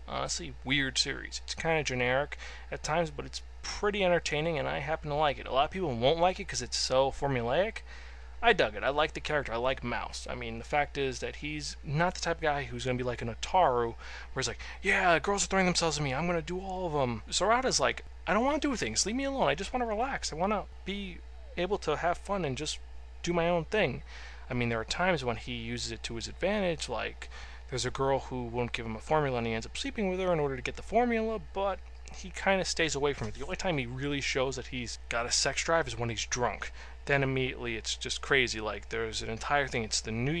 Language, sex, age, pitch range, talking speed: English, male, 20-39, 115-165 Hz, 265 wpm